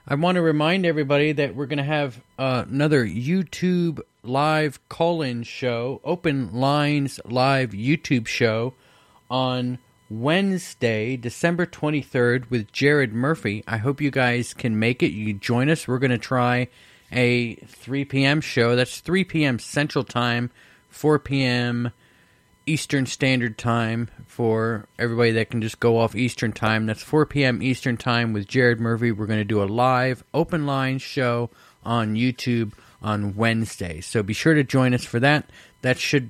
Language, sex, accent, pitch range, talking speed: English, male, American, 115-150 Hz, 160 wpm